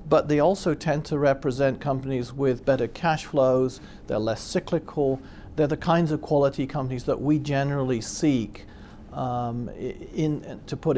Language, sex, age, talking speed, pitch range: English, male, 40-59, 160 wpm, 115-145 Hz